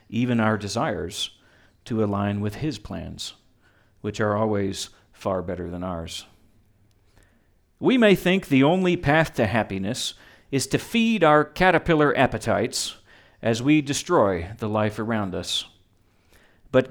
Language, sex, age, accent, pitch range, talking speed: English, male, 40-59, American, 100-145 Hz, 130 wpm